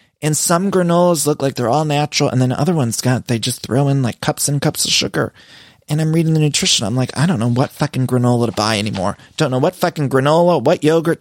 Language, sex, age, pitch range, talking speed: English, male, 30-49, 120-160 Hz, 250 wpm